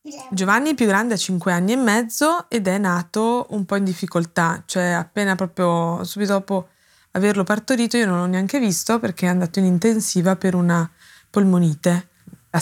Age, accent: 20-39, native